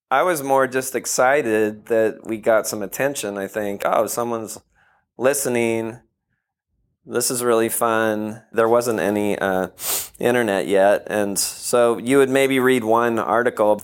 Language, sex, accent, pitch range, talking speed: English, male, American, 100-120 Hz, 145 wpm